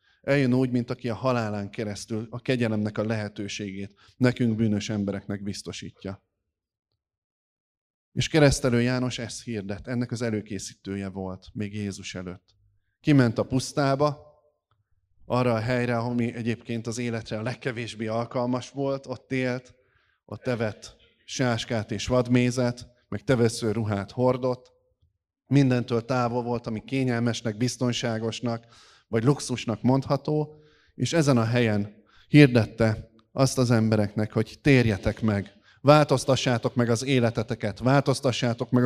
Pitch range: 110-130 Hz